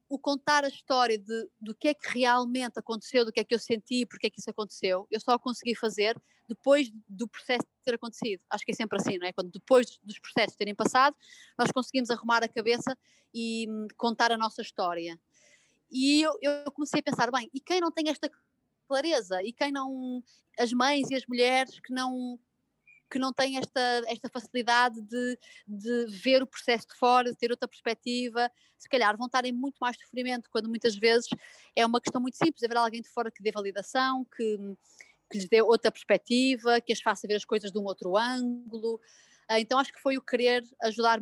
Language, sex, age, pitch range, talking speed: Portuguese, female, 20-39, 220-255 Hz, 205 wpm